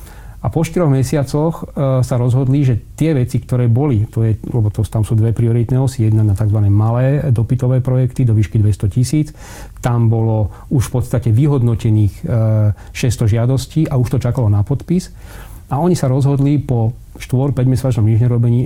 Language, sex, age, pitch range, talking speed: Slovak, male, 40-59, 110-130 Hz, 175 wpm